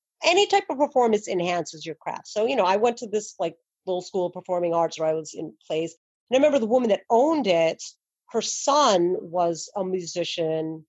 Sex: female